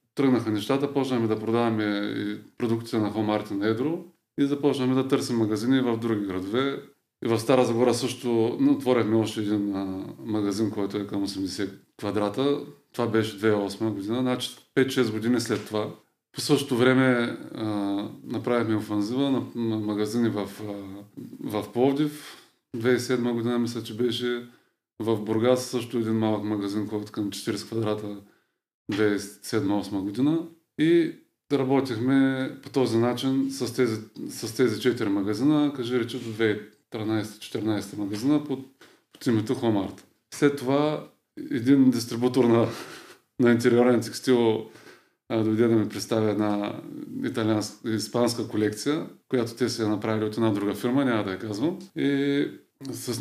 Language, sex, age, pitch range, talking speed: Bulgarian, male, 20-39, 105-130 Hz, 135 wpm